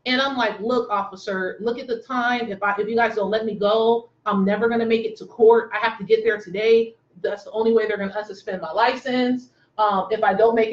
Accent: American